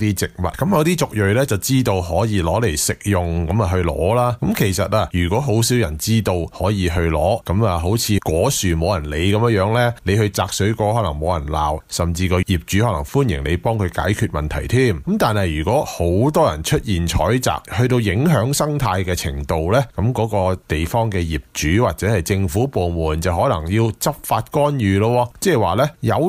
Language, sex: Chinese, male